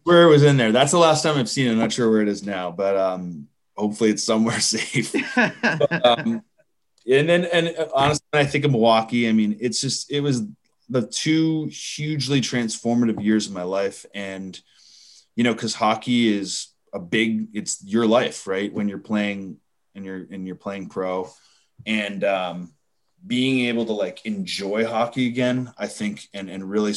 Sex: male